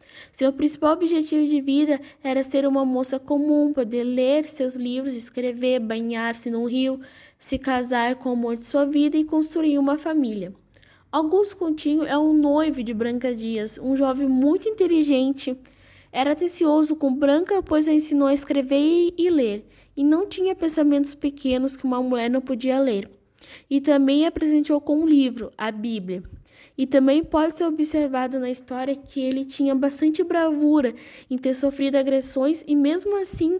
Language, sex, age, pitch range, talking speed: Portuguese, female, 10-29, 260-305 Hz, 165 wpm